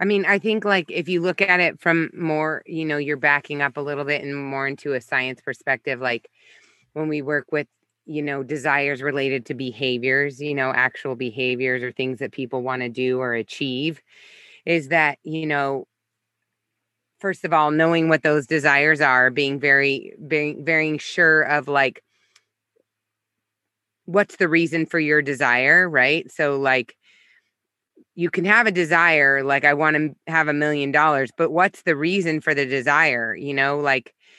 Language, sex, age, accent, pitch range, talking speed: English, female, 20-39, American, 130-165 Hz, 175 wpm